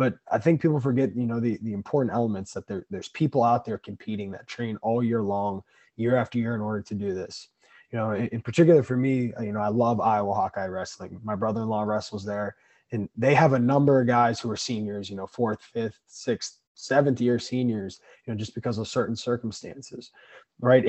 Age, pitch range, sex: 20-39, 115-135 Hz, male